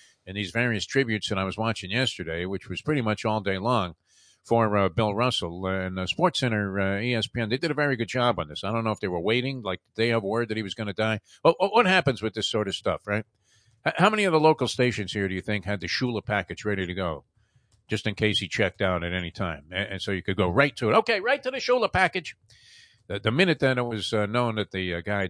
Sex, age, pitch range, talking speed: male, 50-69, 100-130 Hz, 260 wpm